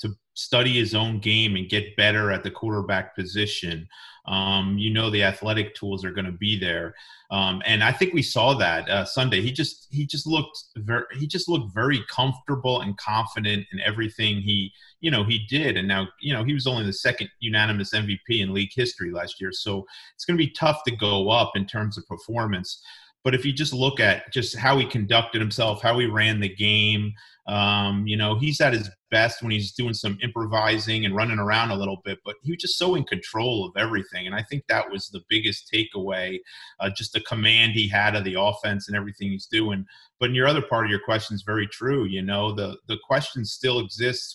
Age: 30-49